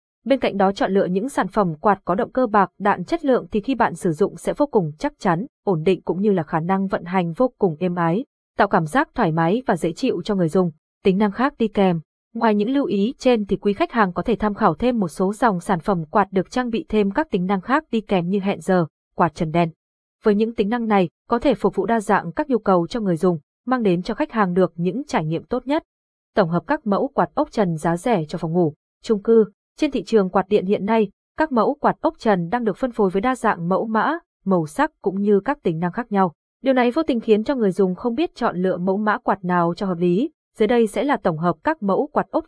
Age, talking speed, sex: 20-39, 270 wpm, female